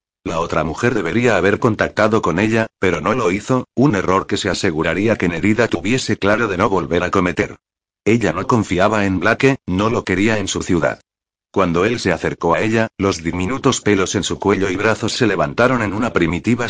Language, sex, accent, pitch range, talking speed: Spanish, male, Spanish, 95-115 Hz, 200 wpm